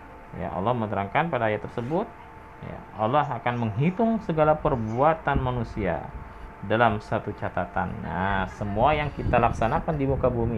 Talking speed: 135 wpm